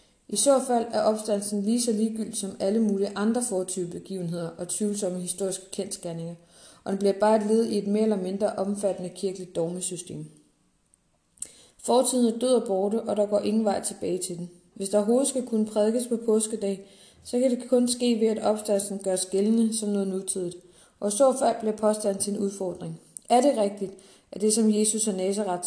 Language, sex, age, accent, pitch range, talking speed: Danish, female, 20-39, native, 190-225 Hz, 185 wpm